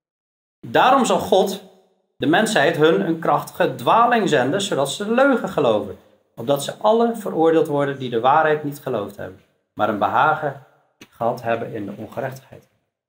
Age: 40-59